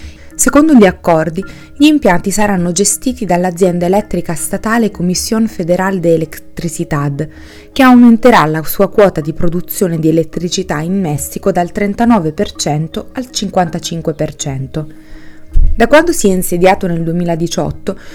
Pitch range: 165-205 Hz